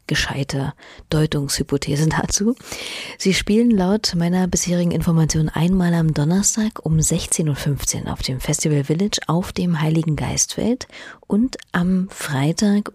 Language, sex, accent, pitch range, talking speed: German, female, German, 145-180 Hz, 120 wpm